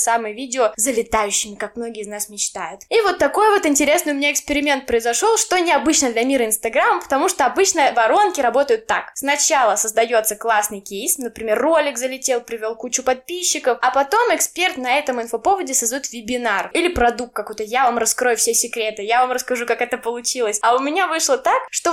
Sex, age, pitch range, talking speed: female, 10-29, 240-310 Hz, 180 wpm